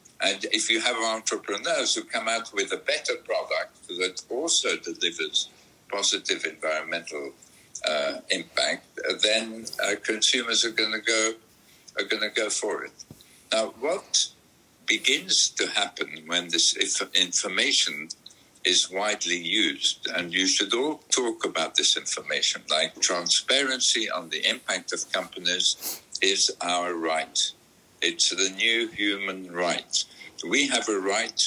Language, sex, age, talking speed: English, male, 60-79, 130 wpm